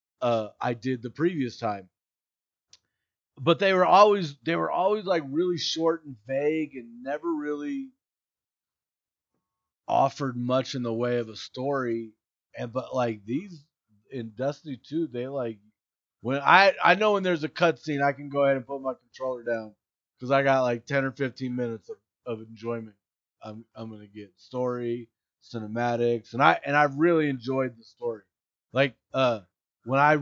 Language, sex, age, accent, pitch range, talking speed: English, male, 30-49, American, 110-135 Hz, 165 wpm